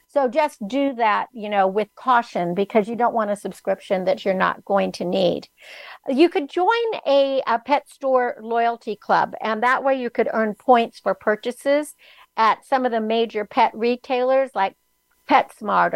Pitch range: 205-255 Hz